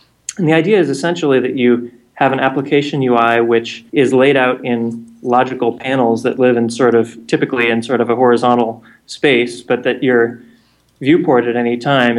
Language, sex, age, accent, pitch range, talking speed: English, male, 30-49, American, 115-130 Hz, 180 wpm